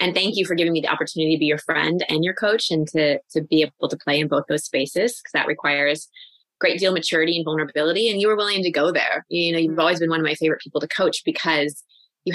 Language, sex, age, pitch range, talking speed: English, female, 20-39, 155-180 Hz, 285 wpm